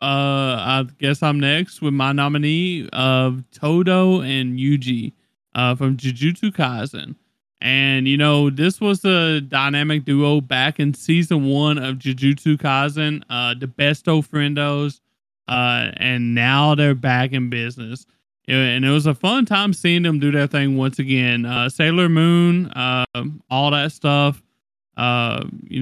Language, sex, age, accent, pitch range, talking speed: English, male, 20-39, American, 130-155 Hz, 150 wpm